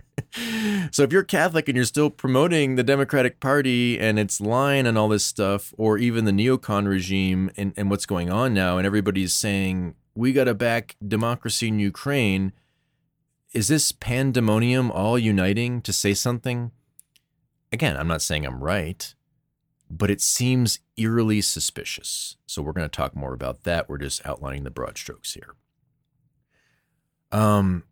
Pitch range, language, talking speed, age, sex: 85-120 Hz, English, 160 wpm, 30-49, male